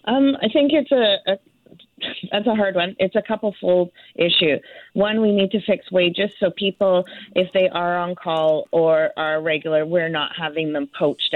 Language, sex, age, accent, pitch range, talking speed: English, female, 30-49, American, 155-190 Hz, 190 wpm